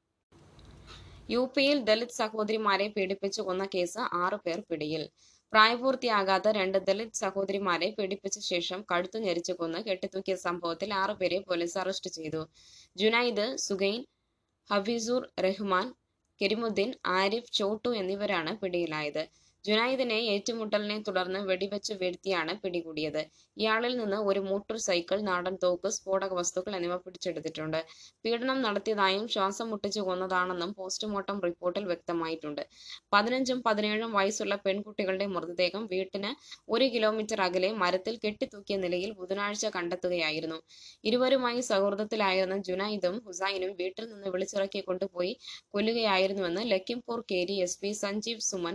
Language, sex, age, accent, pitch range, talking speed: Malayalam, female, 20-39, native, 180-215 Hz, 105 wpm